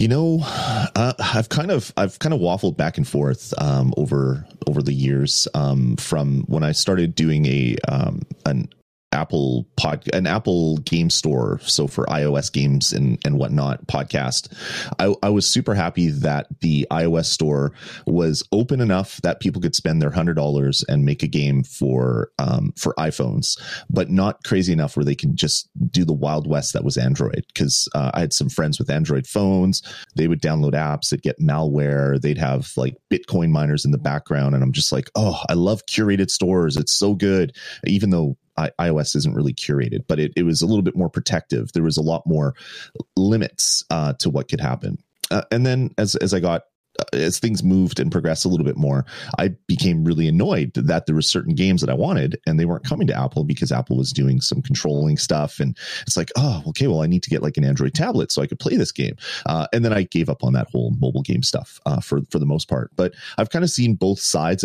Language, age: English, 30-49